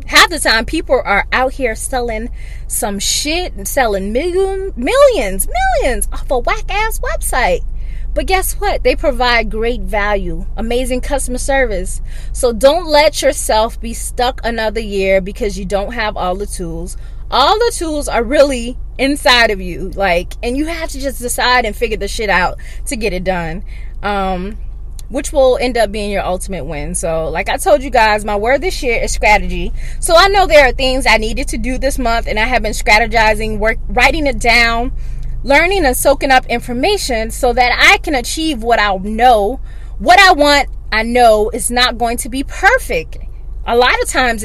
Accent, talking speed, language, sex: American, 185 wpm, English, female